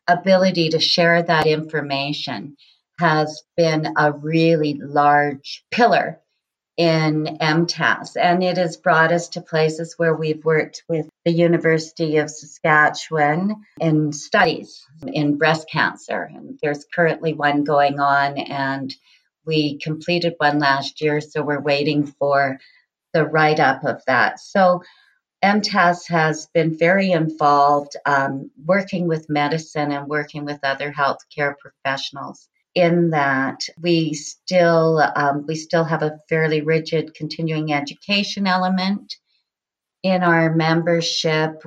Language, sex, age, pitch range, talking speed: English, female, 40-59, 145-165 Hz, 125 wpm